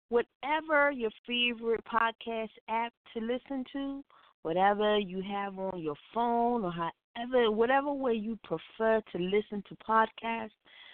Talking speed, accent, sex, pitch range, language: 130 wpm, American, female, 175-235 Hz, English